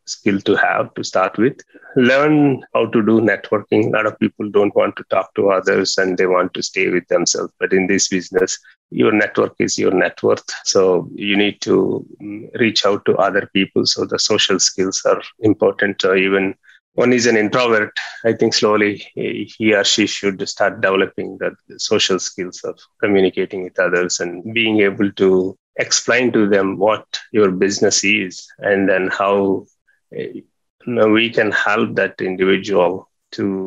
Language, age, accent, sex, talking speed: English, 30-49, Indian, male, 170 wpm